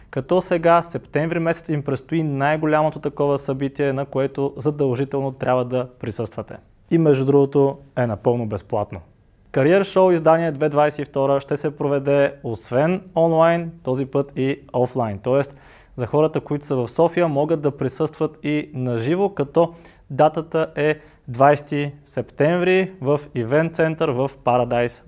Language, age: Bulgarian, 20-39